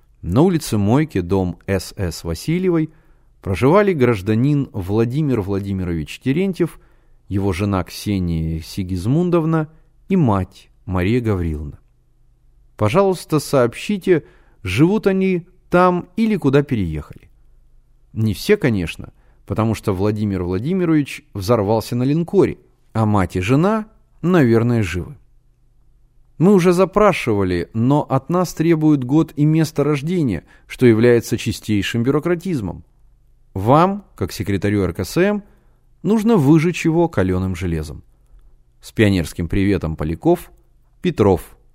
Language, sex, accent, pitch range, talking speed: Russian, male, native, 100-155 Hz, 105 wpm